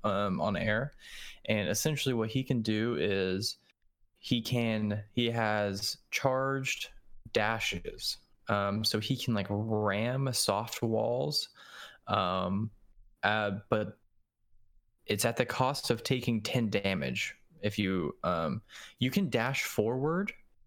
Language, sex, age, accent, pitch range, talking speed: English, male, 20-39, American, 100-120 Hz, 120 wpm